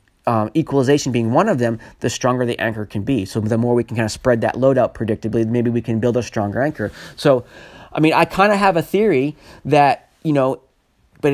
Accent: American